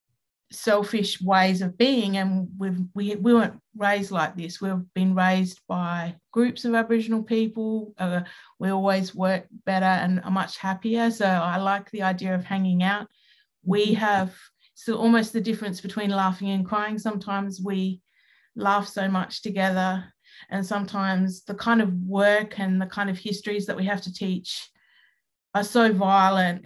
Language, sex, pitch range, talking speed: English, female, 185-210 Hz, 160 wpm